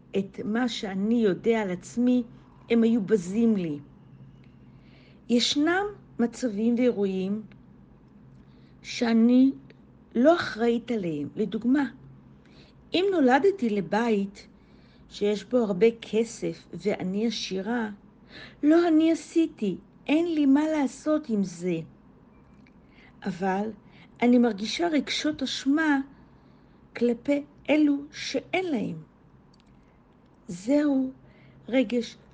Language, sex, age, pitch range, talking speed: Hebrew, female, 50-69, 210-260 Hz, 85 wpm